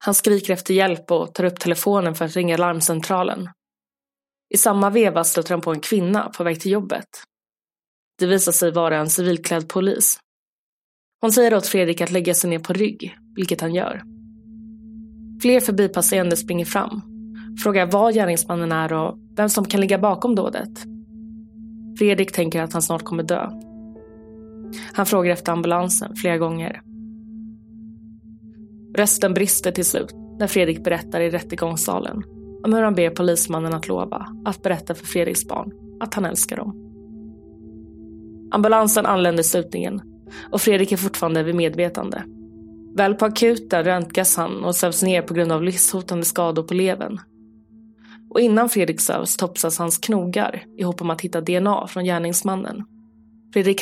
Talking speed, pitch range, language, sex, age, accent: 155 wpm, 170-220 Hz, Swedish, female, 20-39, native